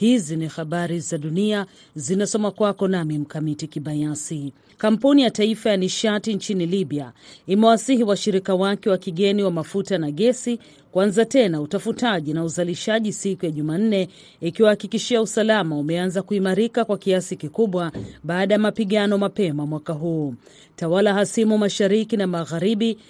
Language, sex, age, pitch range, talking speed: Swahili, female, 40-59, 170-220 Hz, 140 wpm